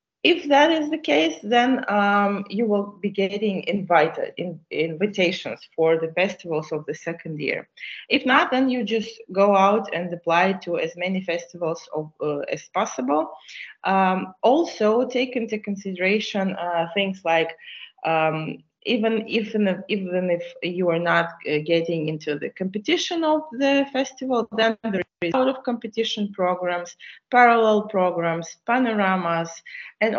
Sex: female